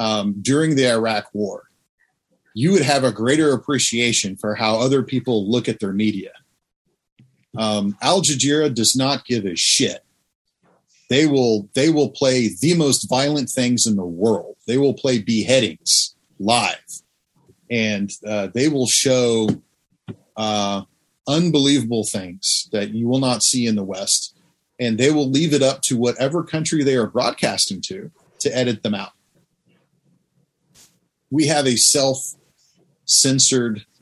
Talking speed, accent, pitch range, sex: 140 wpm, American, 110-140 Hz, male